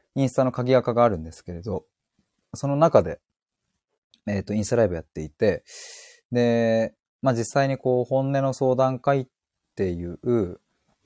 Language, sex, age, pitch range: Japanese, male, 20-39, 95-130 Hz